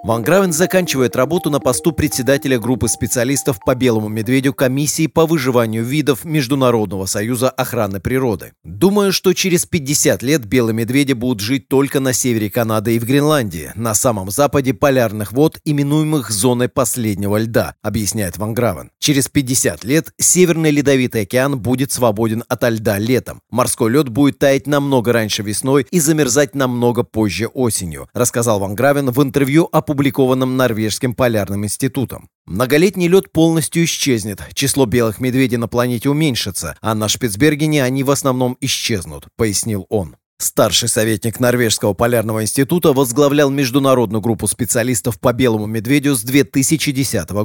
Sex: male